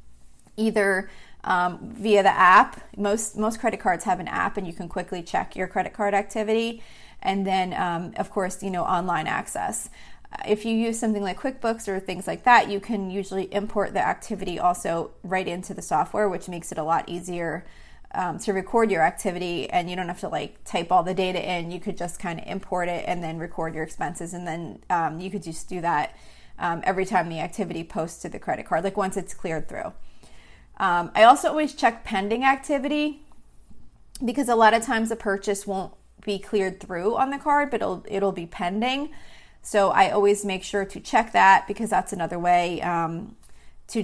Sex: female